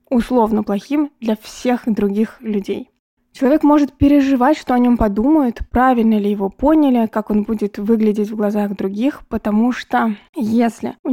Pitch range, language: 215-245 Hz, Russian